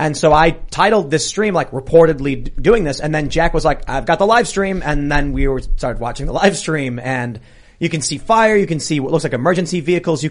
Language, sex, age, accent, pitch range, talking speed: English, male, 30-49, American, 130-165 Hz, 245 wpm